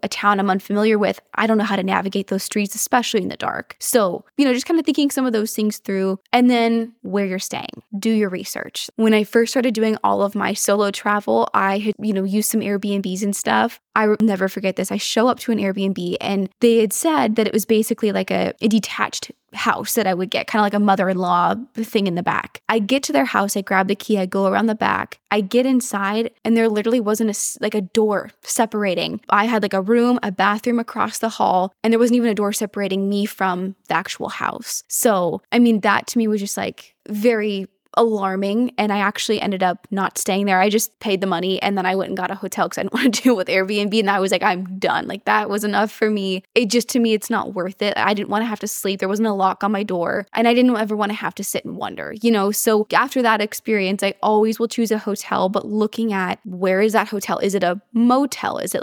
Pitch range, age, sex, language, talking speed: 195-230 Hz, 20-39, female, English, 255 wpm